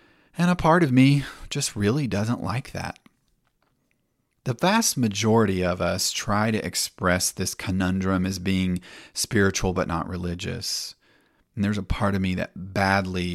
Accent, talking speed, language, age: American, 155 wpm, English, 40-59